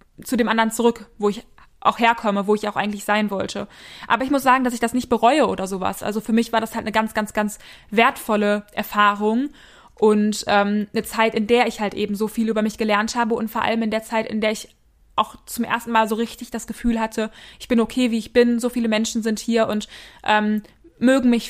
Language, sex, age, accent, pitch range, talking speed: German, female, 20-39, German, 210-235 Hz, 235 wpm